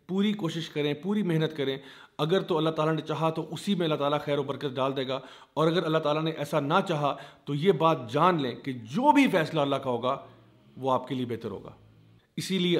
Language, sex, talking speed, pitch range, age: Urdu, male, 240 wpm, 140-170 Hz, 40-59